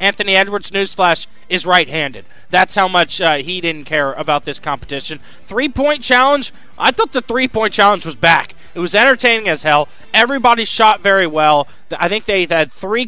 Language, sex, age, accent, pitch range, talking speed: English, male, 20-39, American, 160-205 Hz, 175 wpm